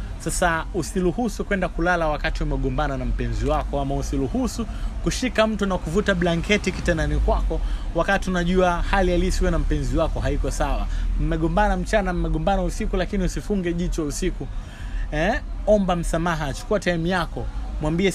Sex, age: male, 30-49